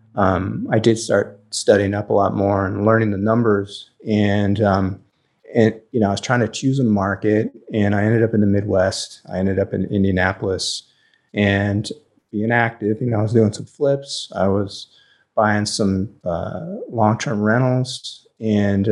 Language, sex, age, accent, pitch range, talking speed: English, male, 30-49, American, 100-115 Hz, 175 wpm